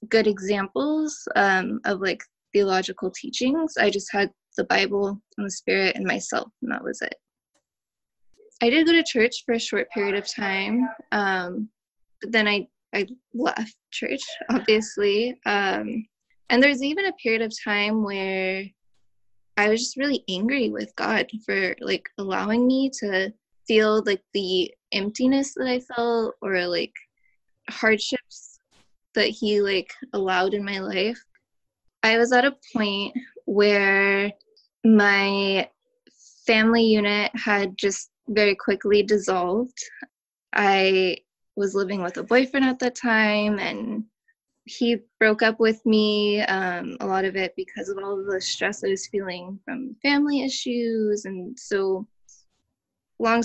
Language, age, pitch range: English, 10-29, 200-240 Hz